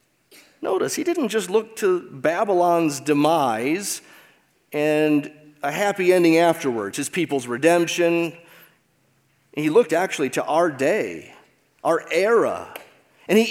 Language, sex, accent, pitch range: English, male, American, 140-210 Hz